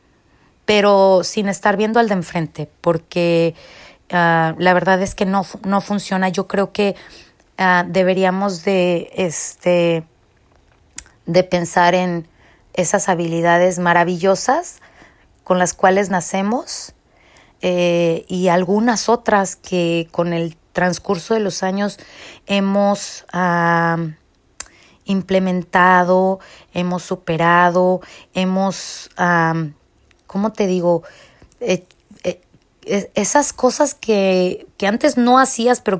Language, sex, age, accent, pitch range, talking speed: Spanish, female, 30-49, Mexican, 180-240 Hz, 100 wpm